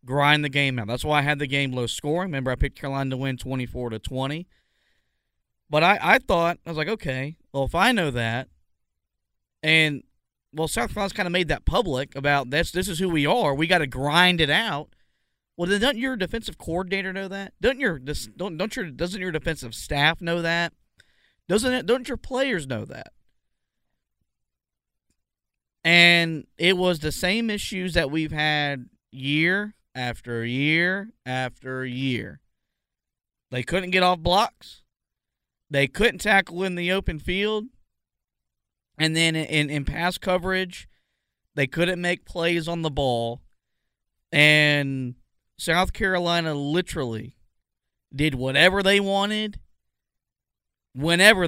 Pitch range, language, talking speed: 130-185 Hz, English, 155 wpm